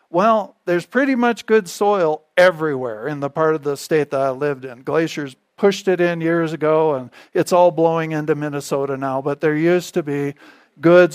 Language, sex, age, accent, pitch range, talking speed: English, male, 50-69, American, 150-185 Hz, 195 wpm